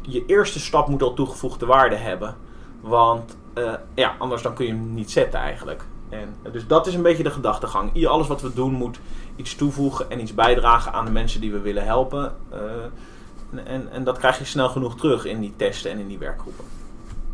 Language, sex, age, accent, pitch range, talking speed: Dutch, male, 20-39, Dutch, 115-140 Hz, 210 wpm